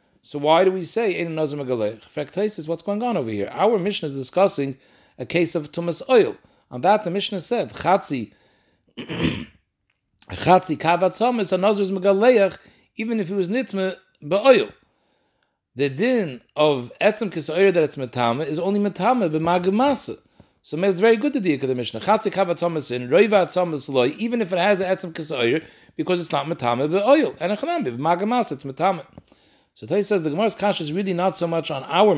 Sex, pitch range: male, 140-200 Hz